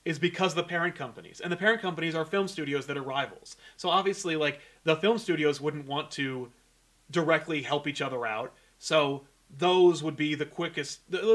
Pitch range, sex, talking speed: 145-185 Hz, male, 185 wpm